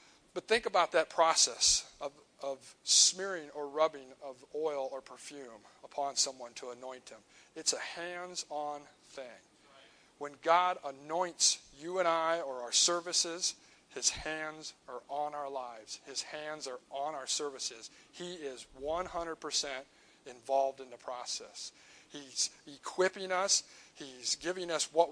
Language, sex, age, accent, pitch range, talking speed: English, male, 50-69, American, 135-170 Hz, 140 wpm